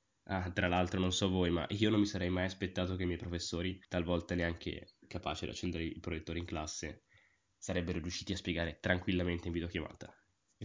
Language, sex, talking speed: Italian, male, 190 wpm